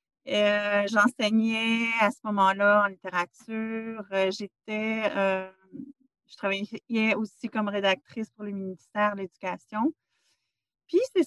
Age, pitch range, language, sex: 40-59, 200-250 Hz, French, female